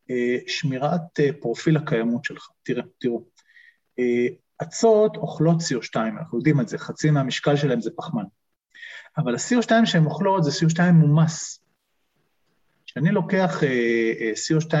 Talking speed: 120 wpm